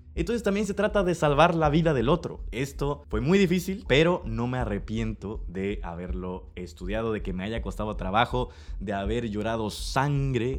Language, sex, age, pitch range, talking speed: Spanish, male, 20-39, 95-135 Hz, 175 wpm